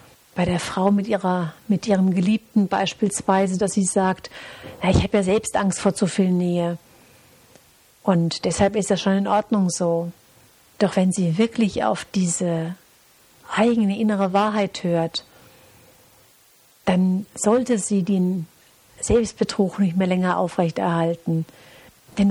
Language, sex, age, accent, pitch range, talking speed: German, female, 50-69, German, 180-210 Hz, 135 wpm